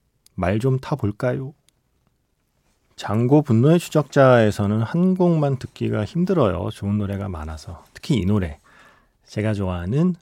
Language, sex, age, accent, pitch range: Korean, male, 40-59, native, 95-140 Hz